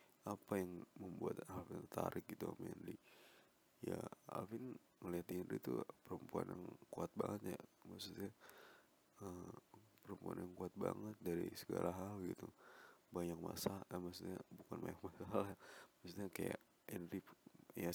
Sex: male